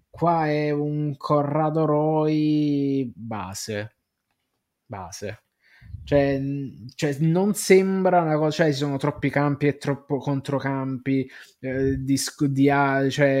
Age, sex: 20-39, male